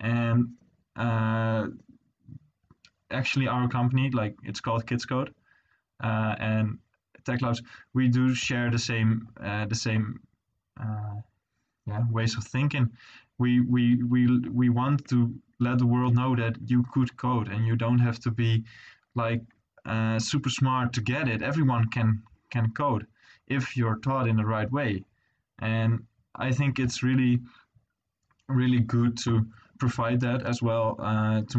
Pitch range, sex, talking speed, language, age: 110-125 Hz, male, 150 wpm, English, 20-39